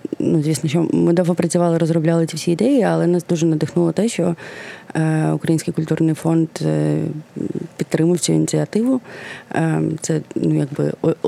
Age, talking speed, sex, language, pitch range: 30-49, 135 wpm, female, Ukrainian, 155-180 Hz